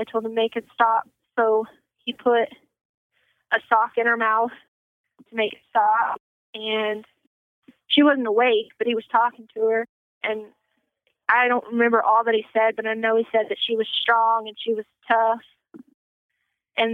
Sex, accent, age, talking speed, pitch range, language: female, American, 30-49, 175 wpm, 225-250 Hz, English